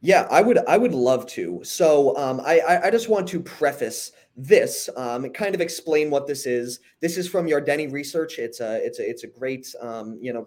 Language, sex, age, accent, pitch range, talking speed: English, male, 30-49, American, 125-200 Hz, 220 wpm